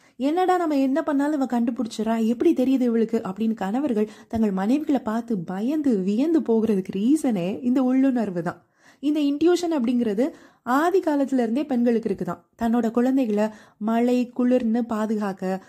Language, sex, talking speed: Tamil, female, 125 wpm